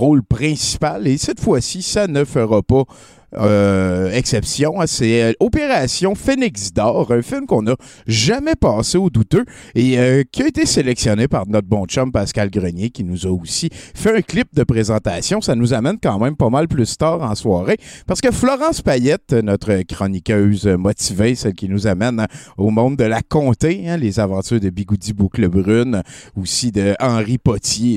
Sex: male